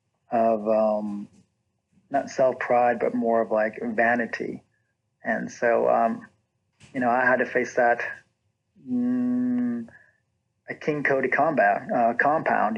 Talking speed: 125 wpm